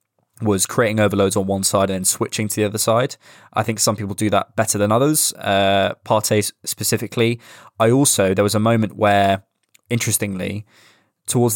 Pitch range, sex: 100-115 Hz, male